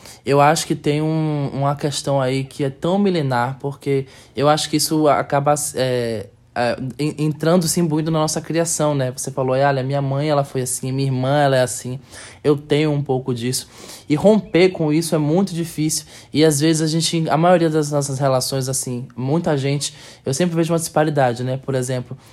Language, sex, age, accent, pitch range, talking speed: Portuguese, male, 20-39, Brazilian, 130-160 Hz, 185 wpm